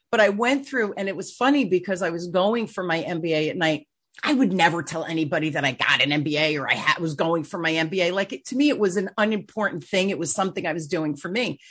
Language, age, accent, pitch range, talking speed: English, 40-59, American, 165-215 Hz, 255 wpm